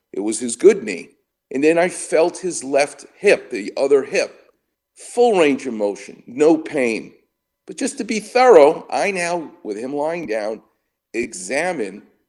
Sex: male